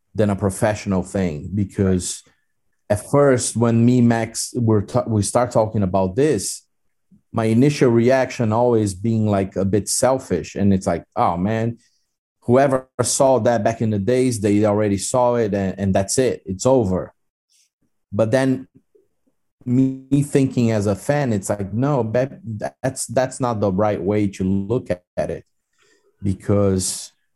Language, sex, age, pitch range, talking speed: English, male, 30-49, 95-120 Hz, 150 wpm